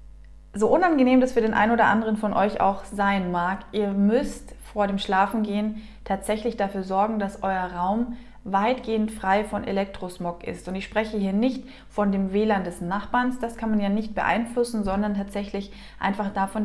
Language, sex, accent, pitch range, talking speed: German, female, German, 200-235 Hz, 180 wpm